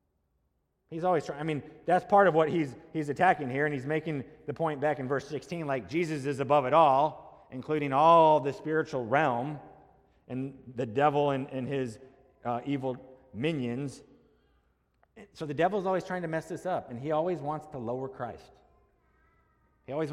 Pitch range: 125-165 Hz